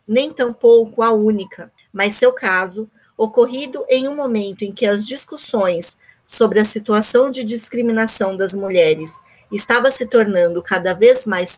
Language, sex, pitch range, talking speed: Portuguese, female, 205-250 Hz, 145 wpm